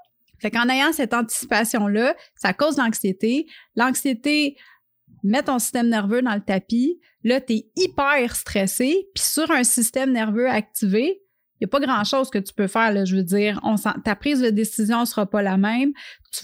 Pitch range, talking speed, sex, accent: 205-260 Hz, 185 wpm, female, Canadian